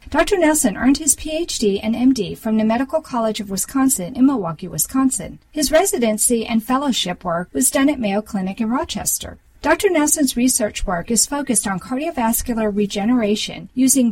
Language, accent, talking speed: English, American, 160 wpm